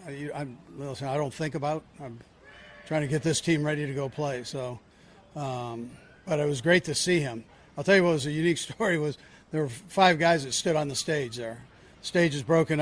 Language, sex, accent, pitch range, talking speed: English, male, American, 145-170 Hz, 210 wpm